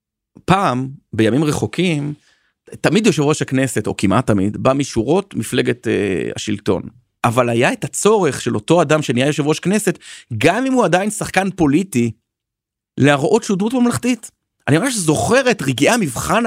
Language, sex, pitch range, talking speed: Hebrew, male, 130-210 Hz, 155 wpm